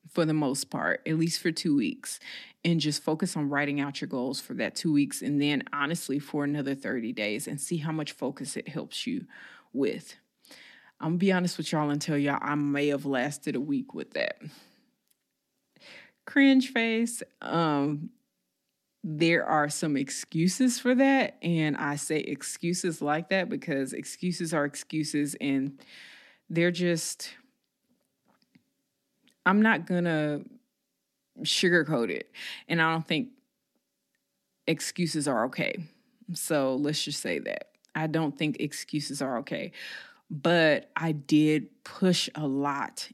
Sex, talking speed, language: female, 150 wpm, English